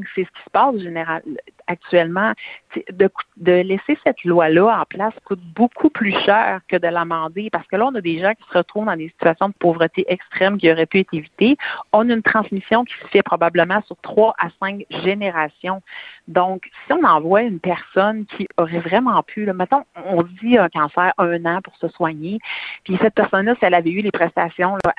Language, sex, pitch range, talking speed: French, female, 175-215 Hz, 210 wpm